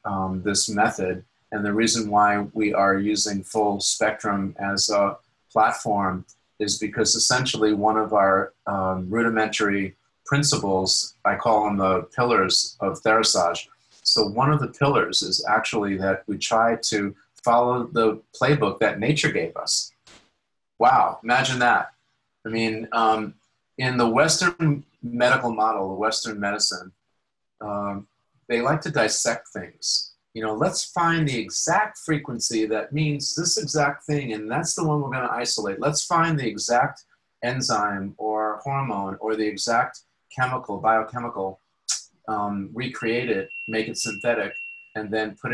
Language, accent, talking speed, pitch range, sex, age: English, American, 145 wpm, 100-125 Hz, male, 30-49